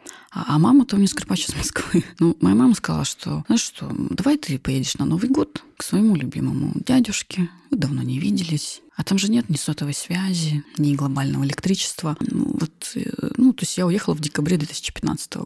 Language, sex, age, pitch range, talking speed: Russian, female, 20-39, 150-210 Hz, 190 wpm